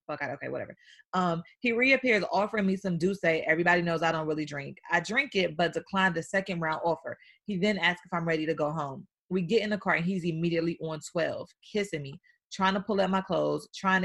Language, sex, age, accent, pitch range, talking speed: English, female, 30-49, American, 165-205 Hz, 230 wpm